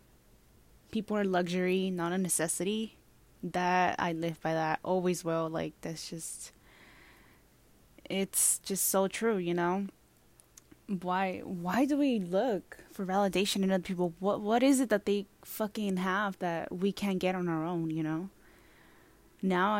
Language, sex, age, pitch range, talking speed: English, female, 10-29, 175-200 Hz, 150 wpm